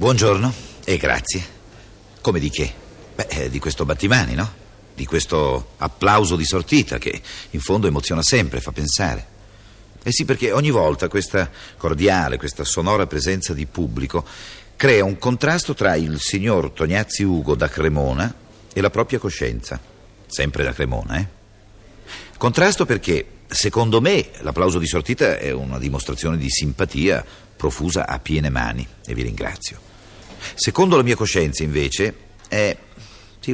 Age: 50-69